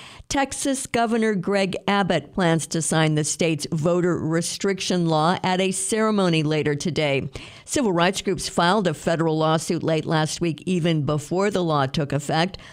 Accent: American